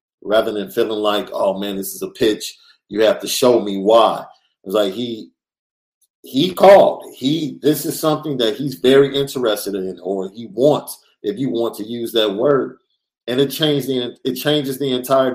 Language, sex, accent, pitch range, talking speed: English, male, American, 115-145 Hz, 190 wpm